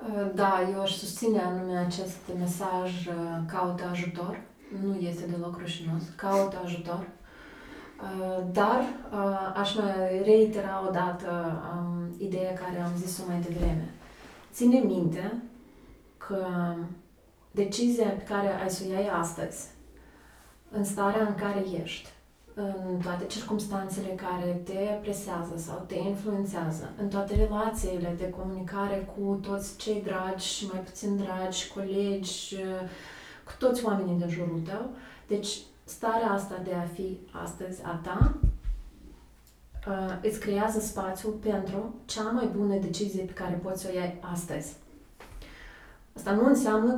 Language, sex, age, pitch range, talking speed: Romanian, female, 30-49, 175-200 Hz, 125 wpm